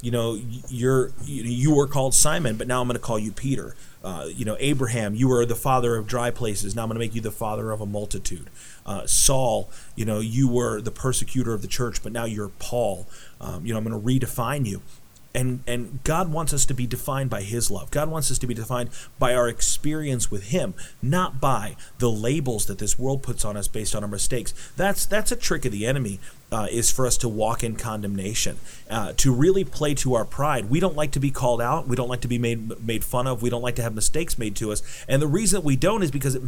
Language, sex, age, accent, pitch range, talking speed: English, male, 30-49, American, 110-135 Hz, 245 wpm